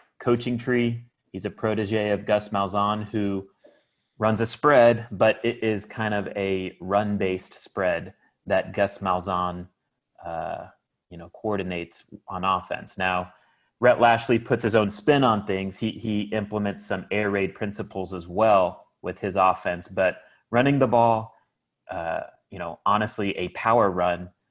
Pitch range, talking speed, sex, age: 95-110 Hz, 150 wpm, male, 30-49